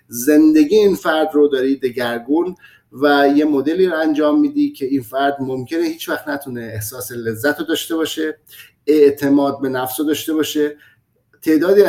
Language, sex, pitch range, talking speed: Persian, male, 125-155 Hz, 150 wpm